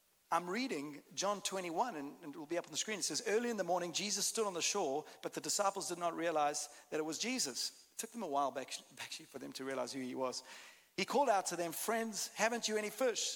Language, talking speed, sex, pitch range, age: English, 255 wpm, male, 160-210 Hz, 40-59